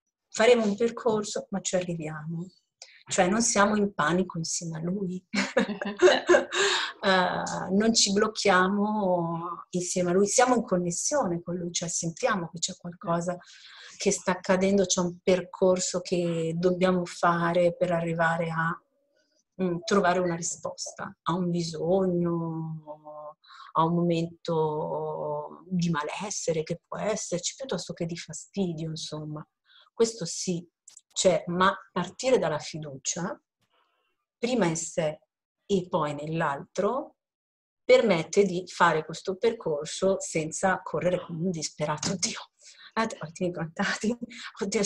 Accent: native